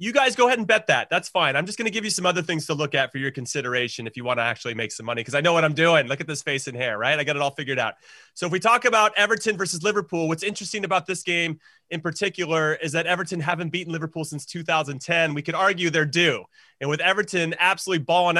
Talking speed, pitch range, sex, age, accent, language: 275 wpm, 155-195 Hz, male, 30-49, American, English